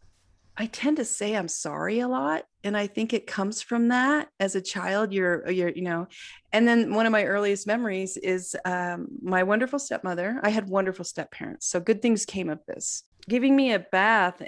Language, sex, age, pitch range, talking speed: English, female, 30-49, 175-215 Hz, 200 wpm